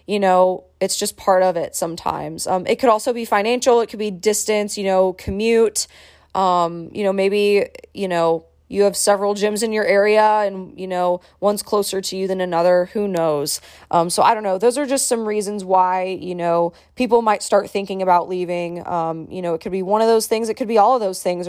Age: 20-39